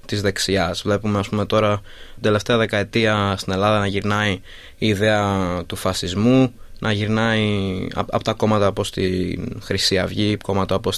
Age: 20-39